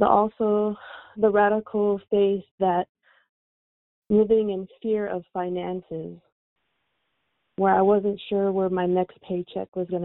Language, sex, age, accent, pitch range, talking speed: English, female, 20-39, American, 180-210 Hz, 120 wpm